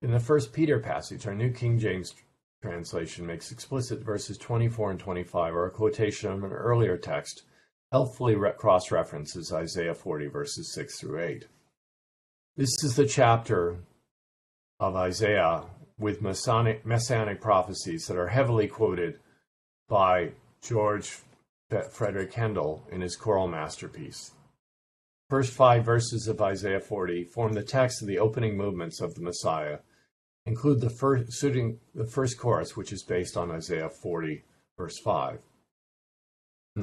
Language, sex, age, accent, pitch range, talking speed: English, male, 50-69, American, 90-120 Hz, 140 wpm